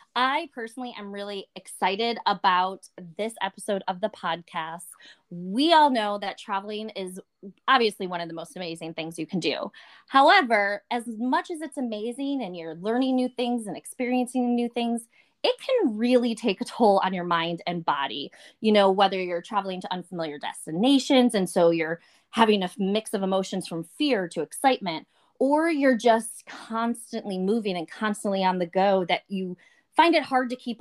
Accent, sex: American, female